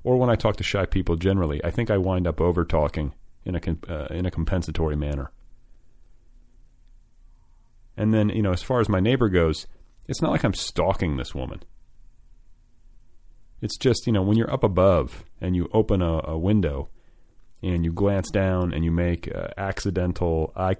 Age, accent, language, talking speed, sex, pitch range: 40-59, American, English, 180 wpm, male, 80-105 Hz